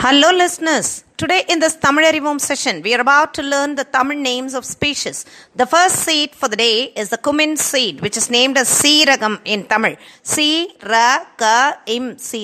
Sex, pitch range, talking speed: female, 230-290 Hz, 180 wpm